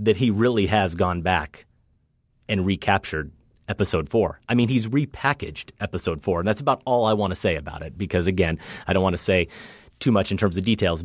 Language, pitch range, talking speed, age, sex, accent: English, 100-120 Hz, 210 wpm, 30-49, male, American